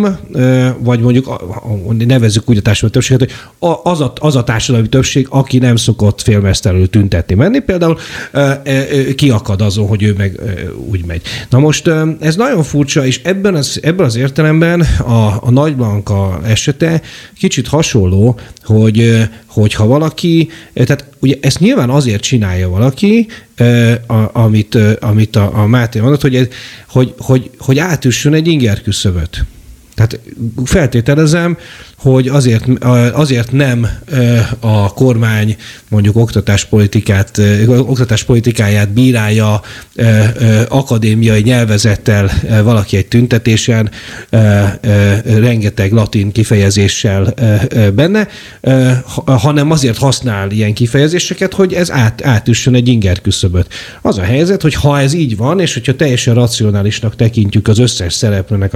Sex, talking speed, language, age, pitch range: male, 115 wpm, Hungarian, 40-59, 105-135 Hz